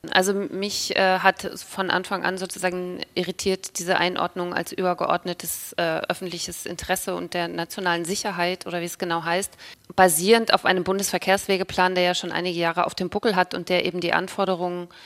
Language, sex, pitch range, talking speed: German, female, 175-195 Hz, 170 wpm